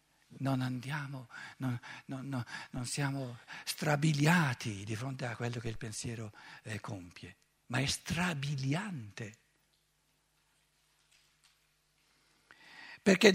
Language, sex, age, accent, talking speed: Italian, male, 60-79, native, 90 wpm